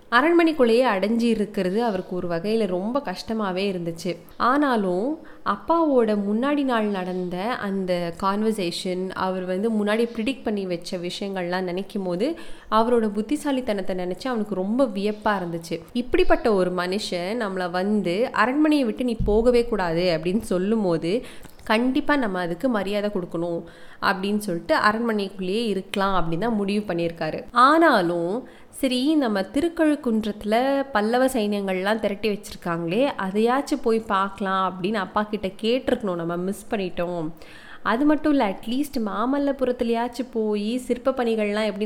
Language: Tamil